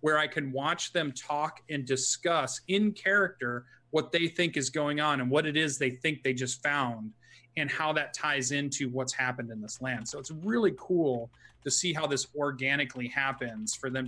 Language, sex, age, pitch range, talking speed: English, male, 30-49, 125-155 Hz, 200 wpm